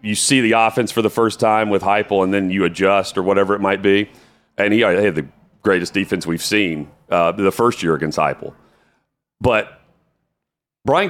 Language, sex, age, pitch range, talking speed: English, male, 40-59, 100-125 Hz, 195 wpm